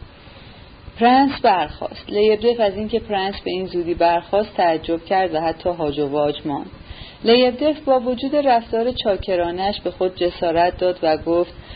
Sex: female